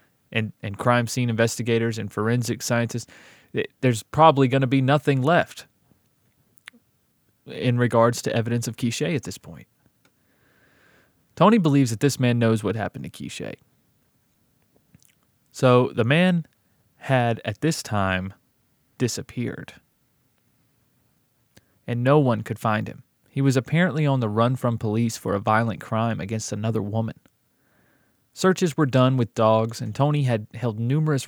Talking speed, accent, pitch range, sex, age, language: 140 wpm, American, 115-140 Hz, male, 20-39, English